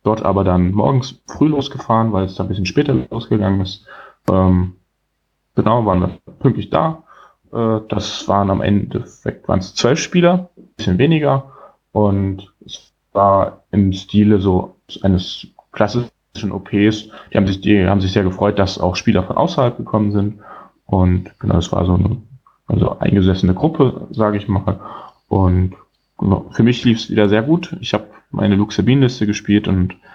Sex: male